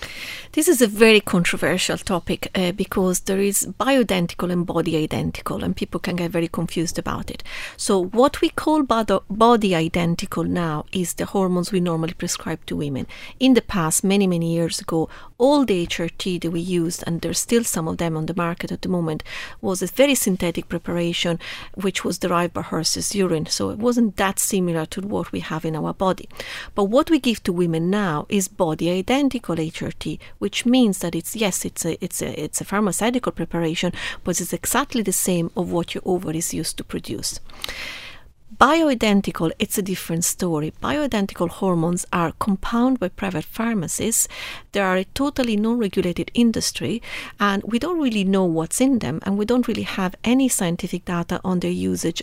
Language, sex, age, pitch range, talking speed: English, female, 40-59, 170-220 Hz, 185 wpm